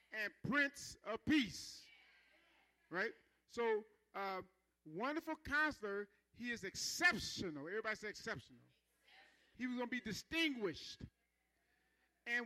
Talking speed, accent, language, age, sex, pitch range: 105 wpm, American, English, 40-59, male, 205-265 Hz